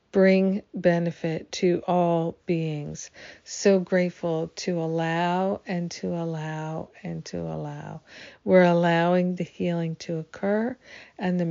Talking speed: 120 wpm